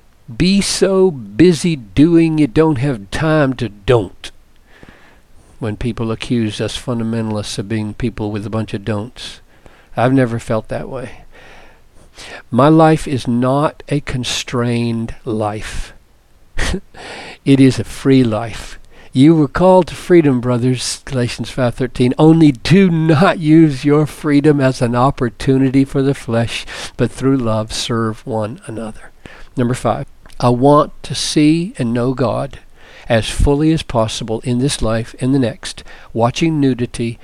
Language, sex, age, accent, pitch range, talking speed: English, male, 60-79, American, 115-145 Hz, 140 wpm